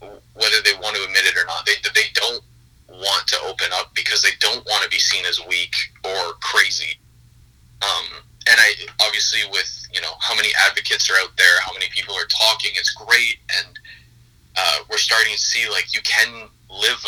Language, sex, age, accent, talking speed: English, male, 30-49, American, 195 wpm